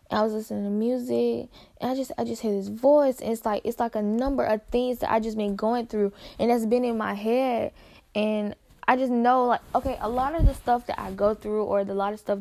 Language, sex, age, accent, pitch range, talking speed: English, female, 10-29, American, 200-230 Hz, 260 wpm